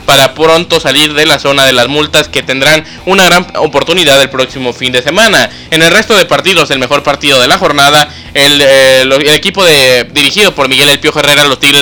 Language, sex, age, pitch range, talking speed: Spanish, male, 20-39, 135-155 Hz, 220 wpm